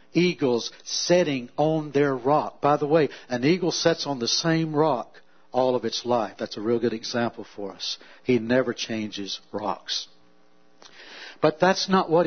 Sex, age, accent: male, 60-79, American